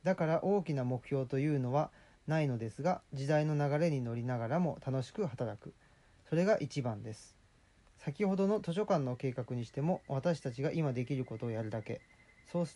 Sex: male